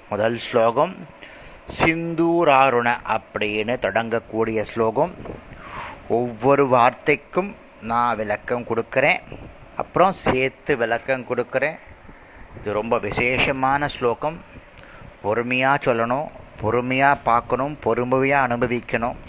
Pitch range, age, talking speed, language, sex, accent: 120-150 Hz, 30-49, 80 wpm, Tamil, male, native